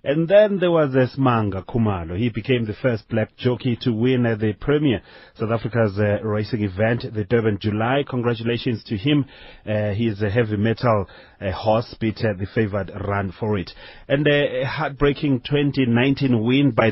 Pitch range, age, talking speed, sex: 100-125 Hz, 30-49, 160 wpm, male